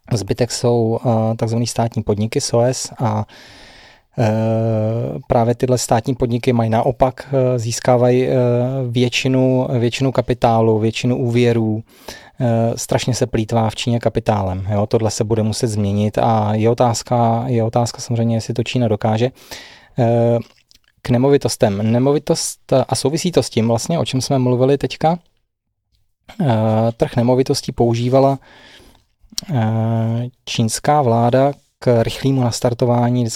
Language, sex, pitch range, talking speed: Czech, male, 115-130 Hz, 115 wpm